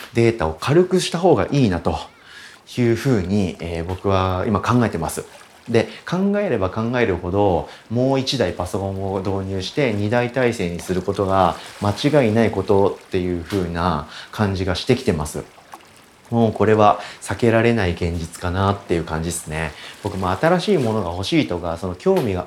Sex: male